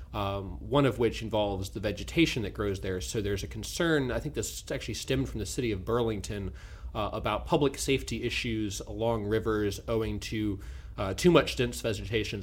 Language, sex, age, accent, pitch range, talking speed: English, male, 30-49, American, 105-120 Hz, 185 wpm